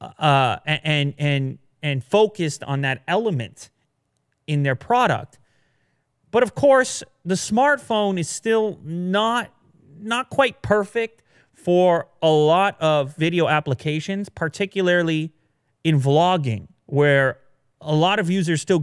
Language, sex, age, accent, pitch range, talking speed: English, male, 30-49, American, 135-185 Hz, 120 wpm